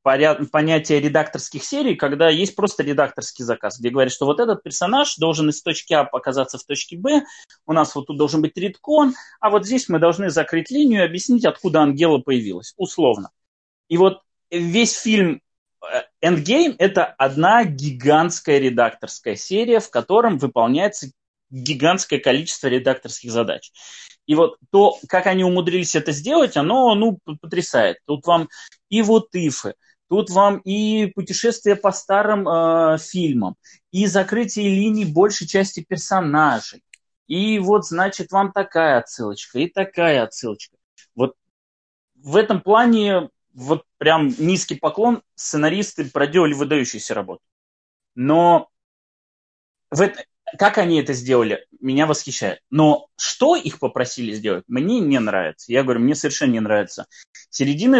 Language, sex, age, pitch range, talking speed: Russian, male, 20-39, 145-200 Hz, 140 wpm